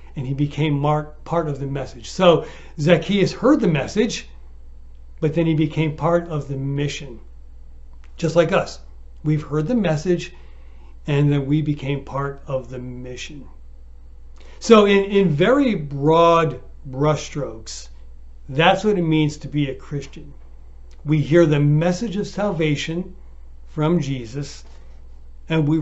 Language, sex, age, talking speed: English, male, 60-79, 135 wpm